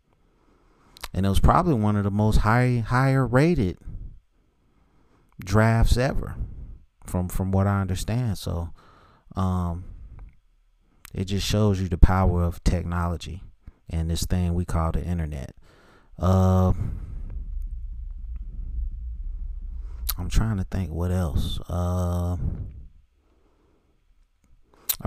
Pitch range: 80-95 Hz